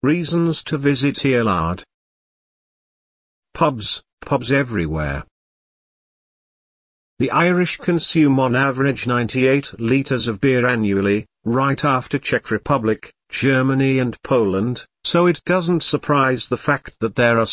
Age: 50-69